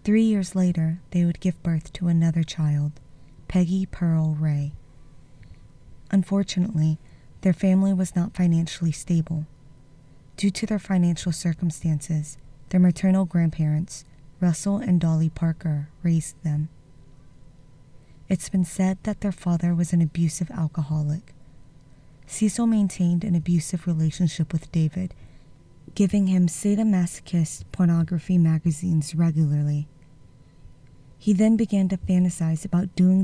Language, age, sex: English, 20-39, female